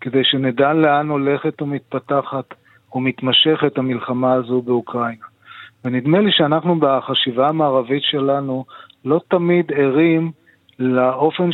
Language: Hebrew